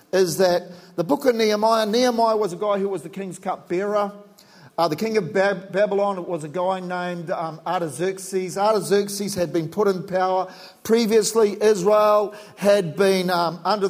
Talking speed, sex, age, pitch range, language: 170 wpm, male, 50-69, 180-225 Hz, English